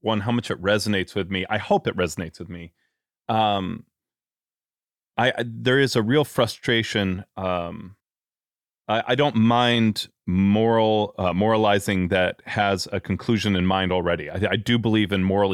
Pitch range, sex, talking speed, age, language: 95-120 Hz, male, 160 wpm, 30-49, English